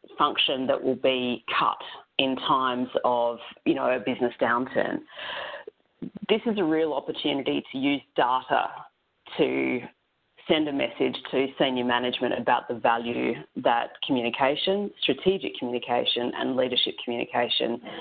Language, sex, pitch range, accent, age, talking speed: English, female, 125-170 Hz, Australian, 30-49, 125 wpm